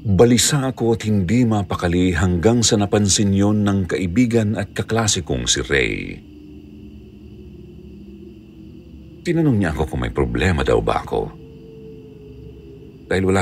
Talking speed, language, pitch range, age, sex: 105 wpm, Filipino, 75-105 Hz, 50-69, male